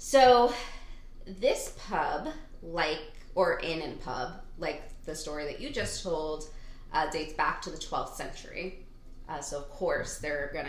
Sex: female